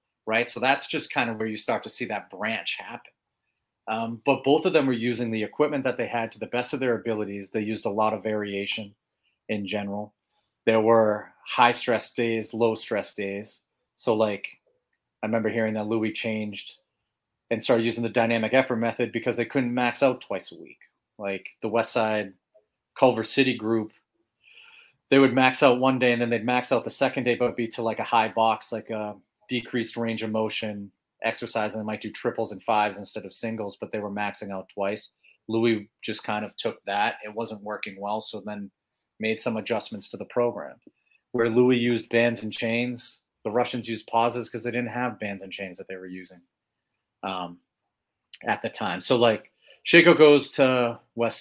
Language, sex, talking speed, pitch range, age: English, male, 200 wpm, 105-120 Hz, 30-49